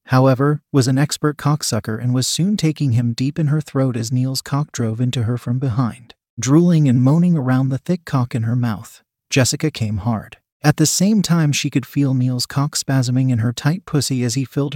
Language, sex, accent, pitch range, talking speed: English, male, American, 125-150 Hz, 210 wpm